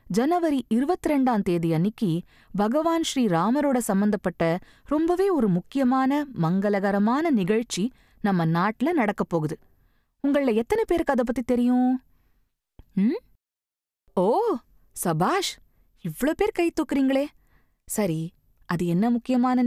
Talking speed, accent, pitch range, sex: 105 wpm, native, 170-265 Hz, female